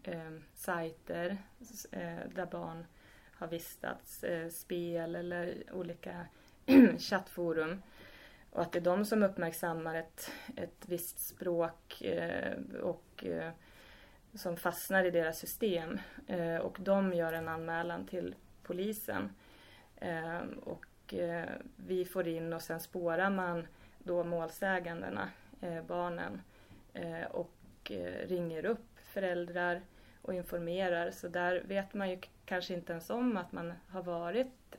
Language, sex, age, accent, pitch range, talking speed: Swedish, female, 30-49, native, 165-190 Hz, 110 wpm